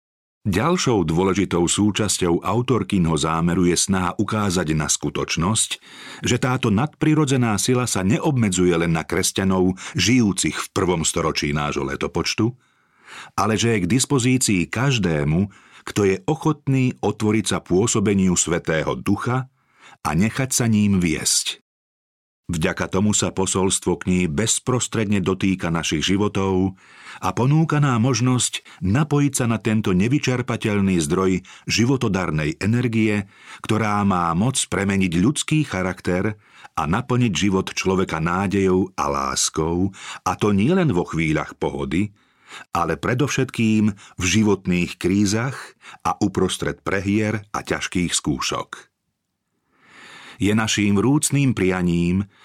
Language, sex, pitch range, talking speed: Slovak, male, 90-115 Hz, 110 wpm